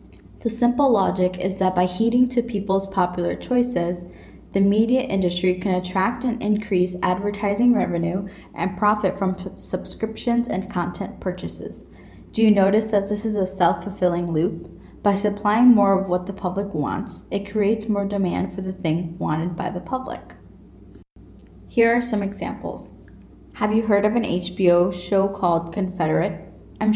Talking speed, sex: 155 wpm, female